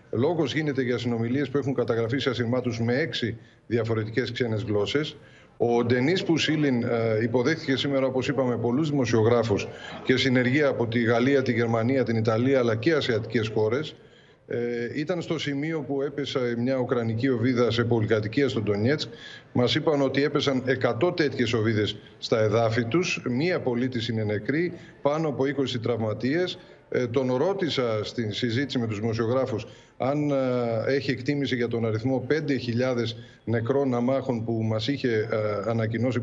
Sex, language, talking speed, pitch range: male, Greek, 145 wpm, 115-135 Hz